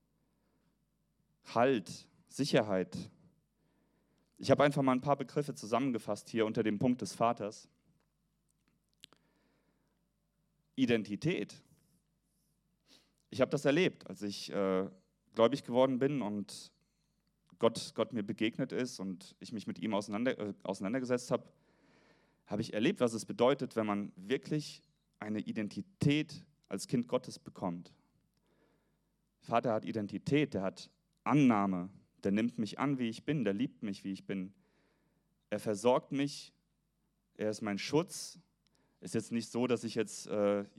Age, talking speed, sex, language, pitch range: 30-49, 135 wpm, male, German, 100-140 Hz